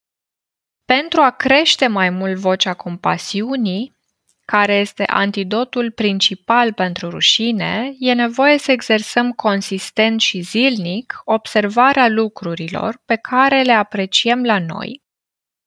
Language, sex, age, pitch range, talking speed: Romanian, female, 20-39, 200-255 Hz, 105 wpm